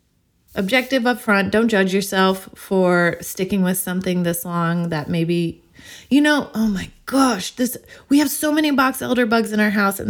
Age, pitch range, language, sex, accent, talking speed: 20-39, 175-220 Hz, English, female, American, 185 wpm